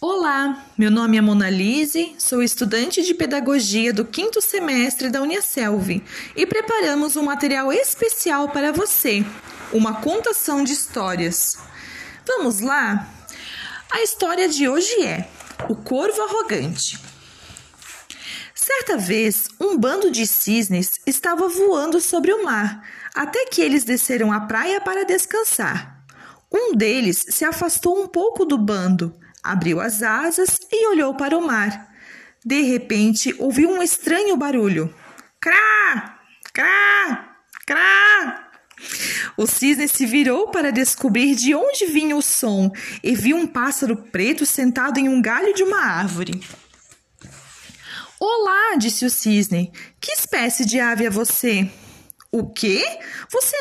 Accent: Brazilian